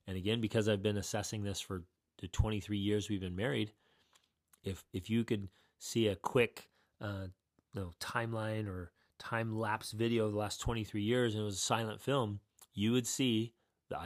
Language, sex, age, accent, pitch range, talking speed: English, male, 30-49, American, 100-115 Hz, 190 wpm